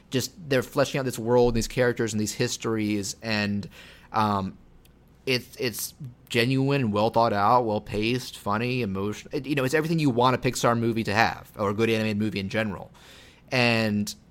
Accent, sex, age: American, male, 30-49